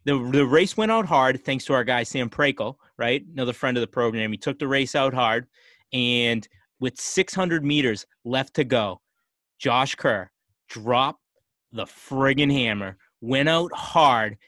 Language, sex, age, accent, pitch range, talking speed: English, male, 30-49, American, 120-145 Hz, 165 wpm